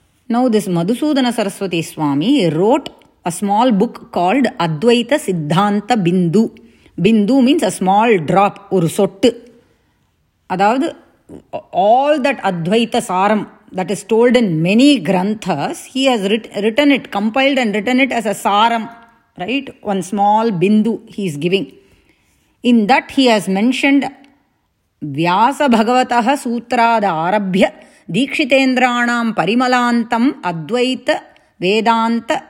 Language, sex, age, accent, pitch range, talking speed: English, female, 30-49, Indian, 190-250 Hz, 105 wpm